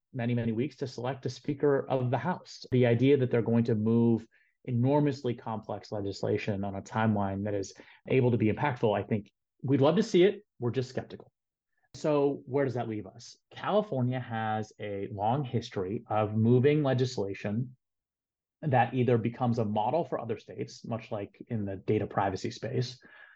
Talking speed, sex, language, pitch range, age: 175 wpm, male, English, 110-135 Hz, 30-49